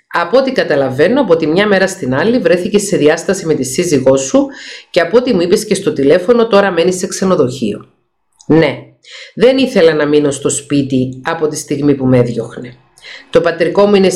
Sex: female